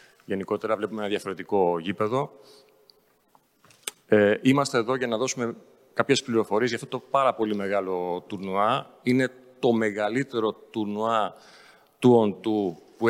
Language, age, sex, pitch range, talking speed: Greek, 40-59, male, 105-130 Hz, 125 wpm